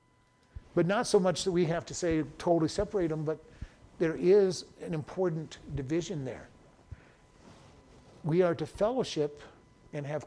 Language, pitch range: English, 140-175 Hz